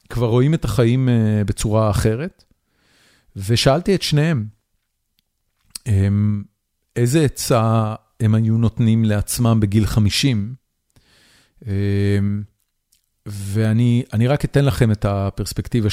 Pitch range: 100-115 Hz